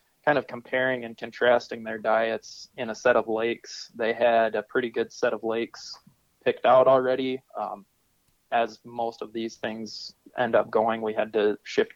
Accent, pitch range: American, 115-125 Hz